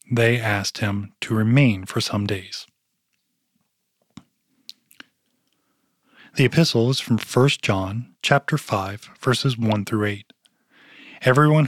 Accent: American